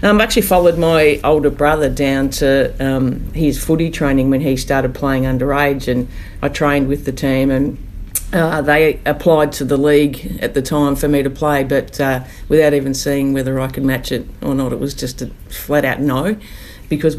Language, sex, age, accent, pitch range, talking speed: English, female, 50-69, Australian, 135-155 Hz, 200 wpm